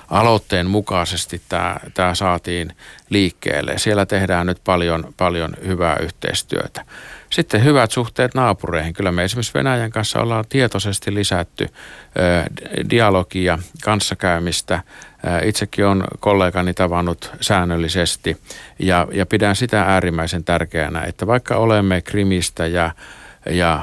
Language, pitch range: Finnish, 85-105 Hz